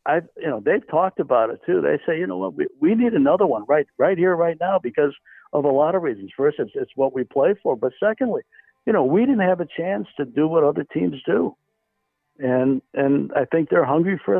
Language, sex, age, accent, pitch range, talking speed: English, male, 60-79, American, 125-145 Hz, 240 wpm